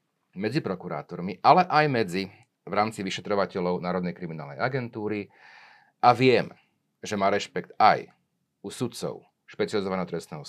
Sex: male